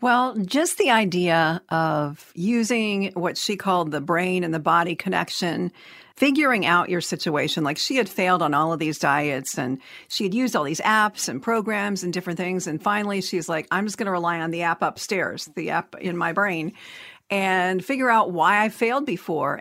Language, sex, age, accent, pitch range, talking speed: English, female, 50-69, American, 175-225 Hz, 200 wpm